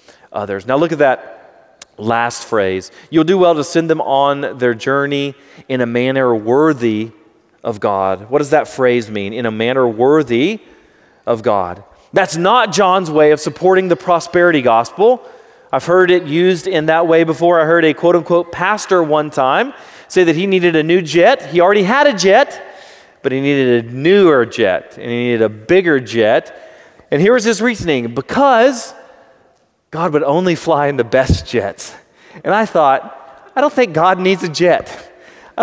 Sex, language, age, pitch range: male, English, 30-49, 130-175 Hz